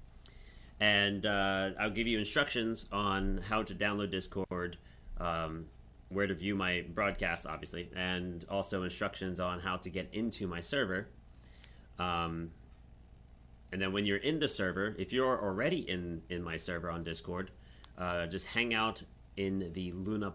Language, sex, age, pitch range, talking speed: English, male, 30-49, 80-95 Hz, 155 wpm